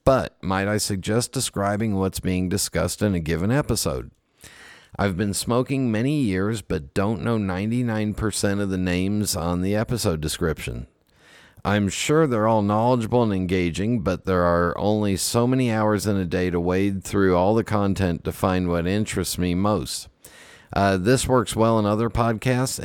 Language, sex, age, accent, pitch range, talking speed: English, male, 50-69, American, 90-110 Hz, 170 wpm